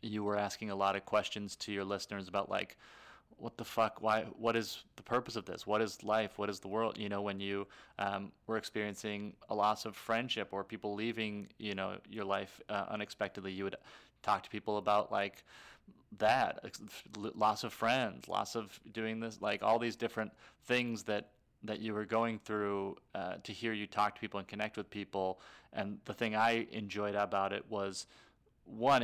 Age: 30-49